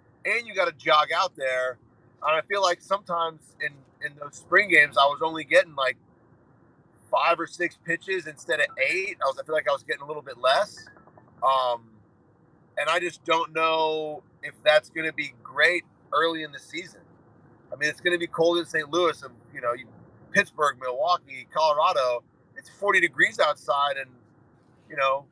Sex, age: male, 30-49